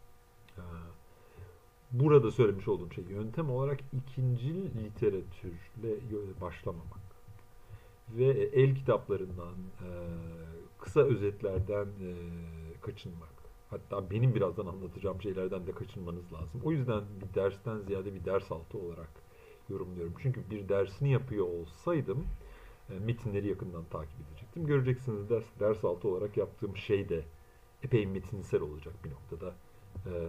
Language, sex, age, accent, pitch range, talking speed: Turkish, male, 40-59, native, 85-115 Hz, 110 wpm